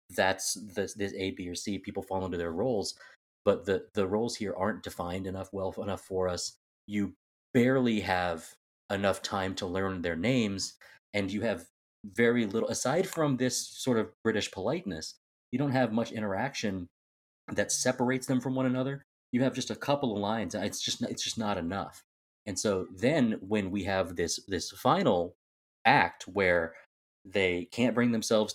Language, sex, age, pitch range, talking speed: English, male, 30-49, 90-115 Hz, 175 wpm